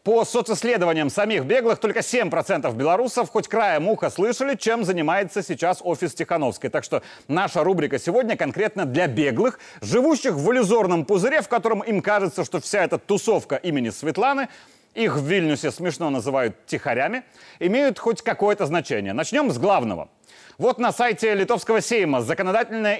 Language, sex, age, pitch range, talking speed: Russian, male, 30-49, 175-230 Hz, 150 wpm